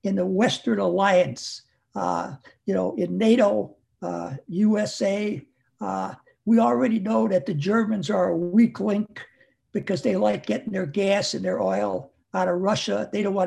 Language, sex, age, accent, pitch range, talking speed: English, male, 60-79, American, 180-230 Hz, 165 wpm